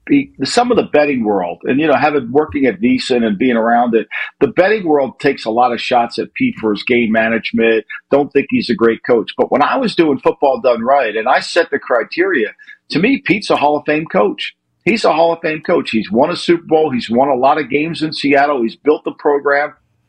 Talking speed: 240 wpm